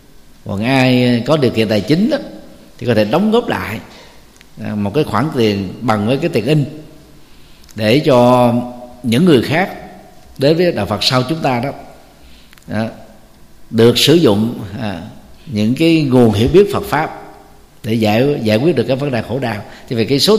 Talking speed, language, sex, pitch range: 175 wpm, Vietnamese, male, 105-135 Hz